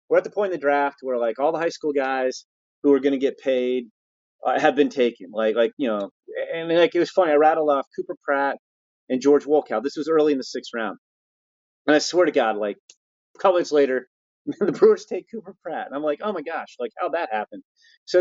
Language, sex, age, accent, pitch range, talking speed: English, male, 30-49, American, 125-175 Hz, 250 wpm